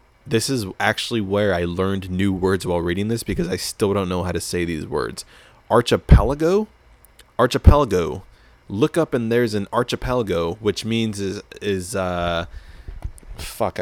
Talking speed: 150 wpm